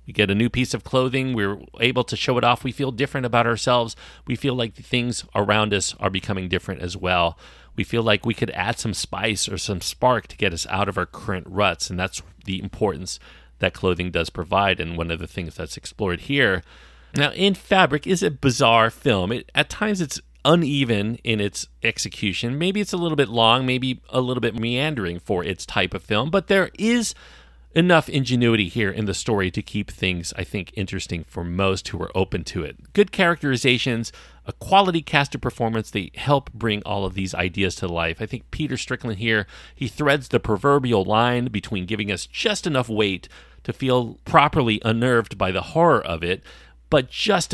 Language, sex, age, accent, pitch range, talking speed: English, male, 40-59, American, 95-125 Hz, 200 wpm